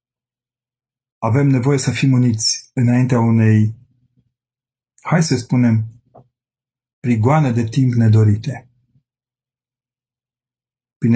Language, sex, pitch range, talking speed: Romanian, male, 110-125 Hz, 80 wpm